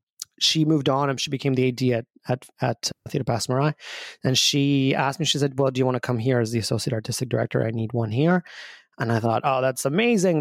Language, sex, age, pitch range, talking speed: English, male, 30-49, 130-155 Hz, 230 wpm